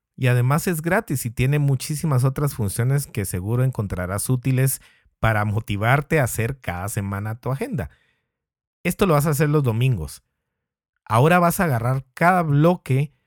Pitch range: 105-145 Hz